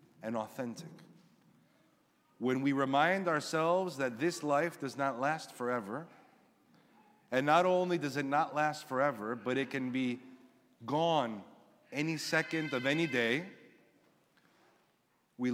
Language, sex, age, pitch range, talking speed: English, male, 40-59, 125-150 Hz, 125 wpm